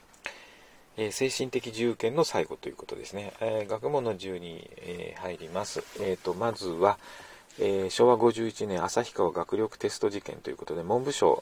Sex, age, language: male, 40-59, Japanese